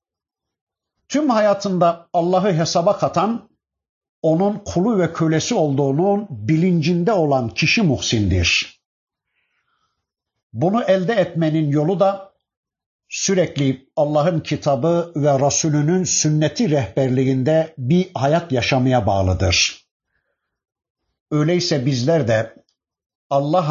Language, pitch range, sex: Turkish, 130-170 Hz, male